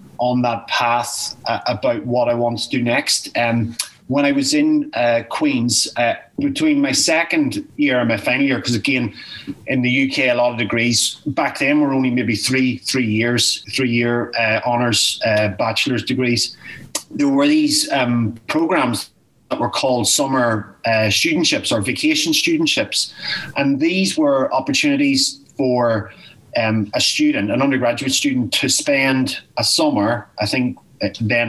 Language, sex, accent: English, male, Irish